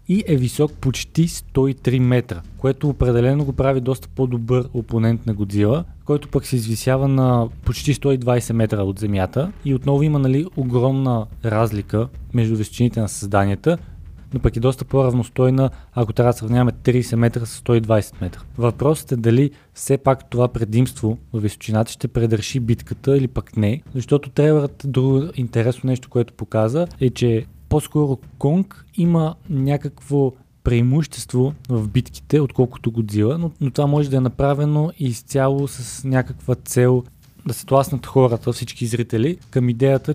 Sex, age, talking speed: male, 20-39, 150 wpm